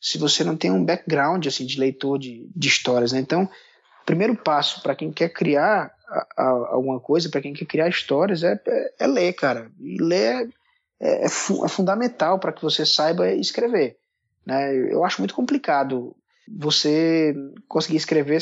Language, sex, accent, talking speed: Portuguese, male, Brazilian, 180 wpm